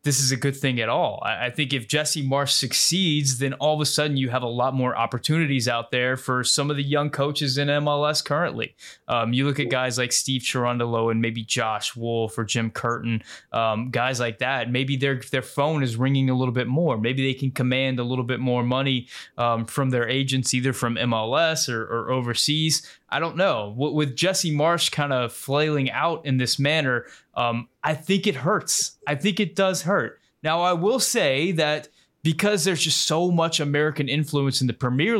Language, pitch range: English, 125-150 Hz